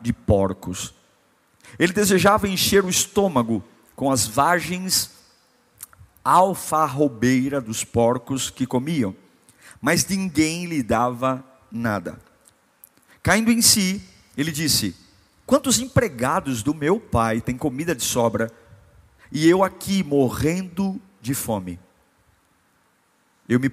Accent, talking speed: Brazilian, 105 wpm